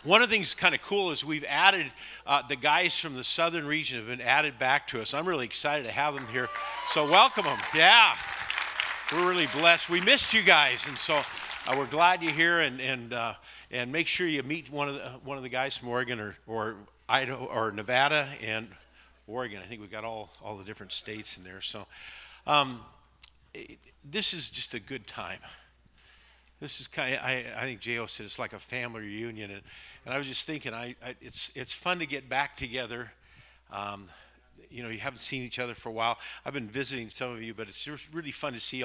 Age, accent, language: 50-69, American, English